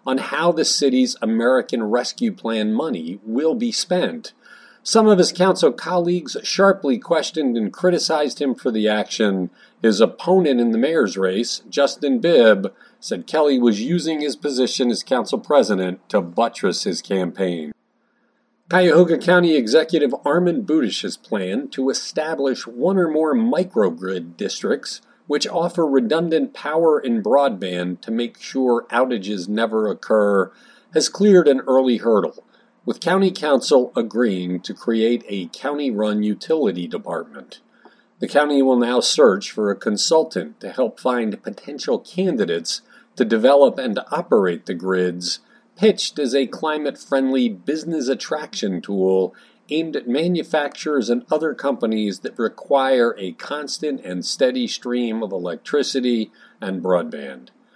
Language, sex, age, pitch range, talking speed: English, male, 40-59, 110-180 Hz, 135 wpm